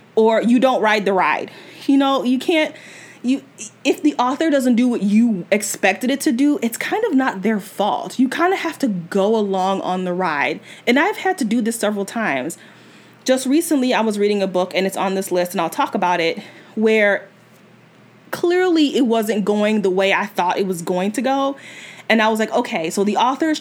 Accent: American